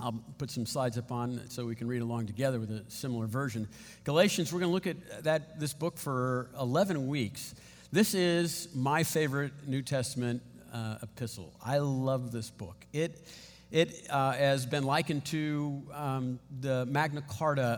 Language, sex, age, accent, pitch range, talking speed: English, male, 50-69, American, 125-165 Hz, 170 wpm